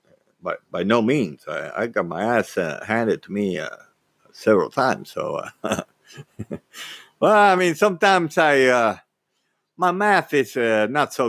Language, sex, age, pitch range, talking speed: English, male, 50-69, 90-135 Hz, 160 wpm